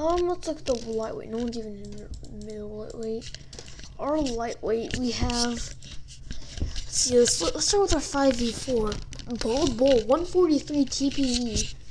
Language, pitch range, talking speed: English, 205-265 Hz, 150 wpm